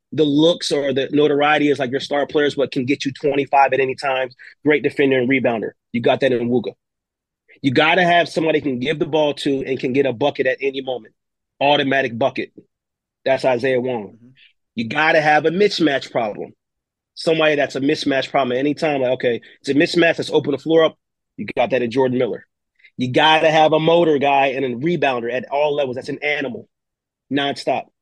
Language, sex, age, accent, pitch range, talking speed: English, male, 30-49, American, 135-160 Hz, 210 wpm